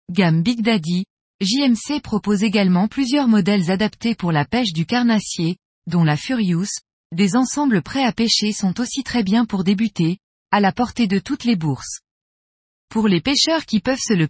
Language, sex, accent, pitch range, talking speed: French, female, French, 180-245 Hz, 175 wpm